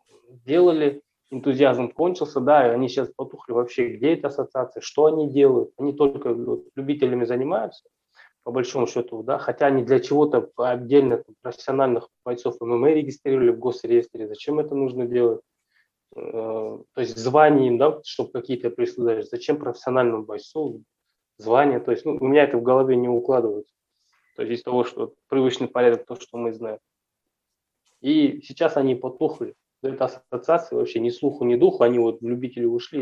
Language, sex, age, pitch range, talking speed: Russian, male, 20-39, 125-185 Hz, 155 wpm